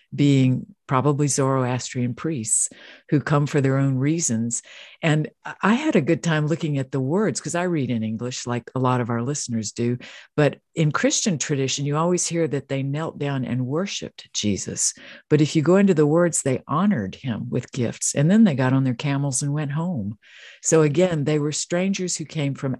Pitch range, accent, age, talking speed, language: 130-160 Hz, American, 50-69, 200 wpm, English